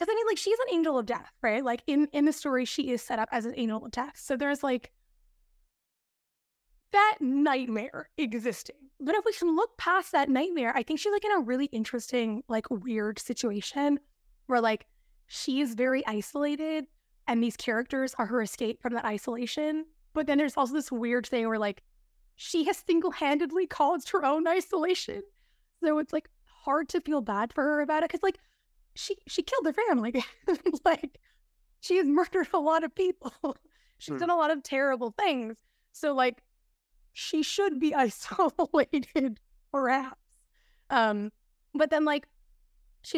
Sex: female